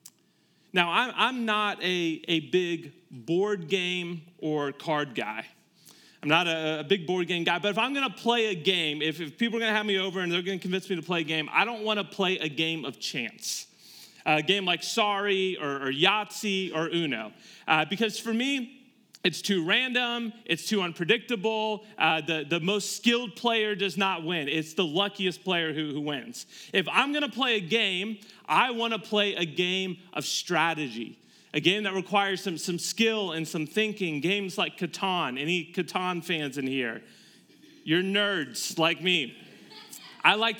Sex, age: male, 30-49